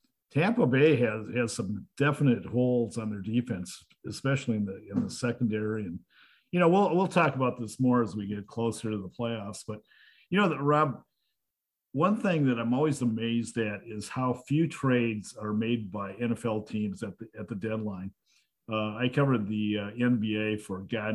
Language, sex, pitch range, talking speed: English, male, 110-135 Hz, 185 wpm